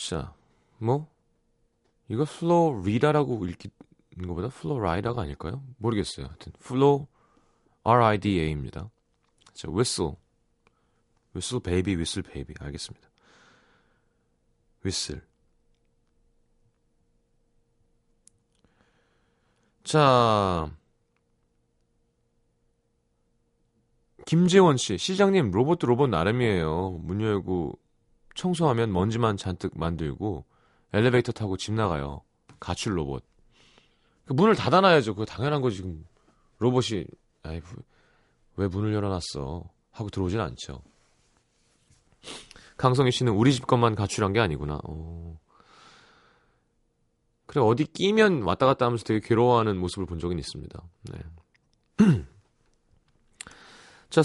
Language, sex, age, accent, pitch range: Korean, male, 40-59, native, 90-130 Hz